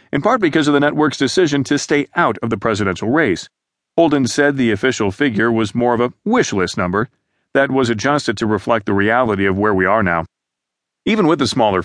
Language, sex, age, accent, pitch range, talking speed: English, male, 40-59, American, 110-145 Hz, 215 wpm